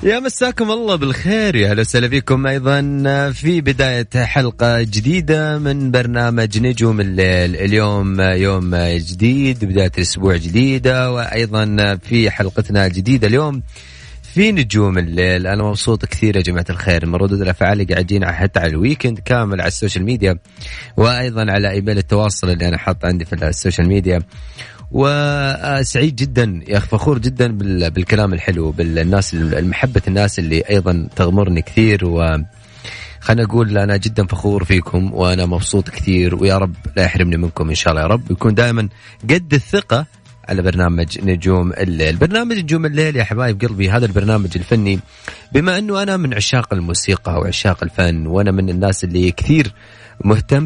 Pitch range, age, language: 90-120 Hz, 30-49, Arabic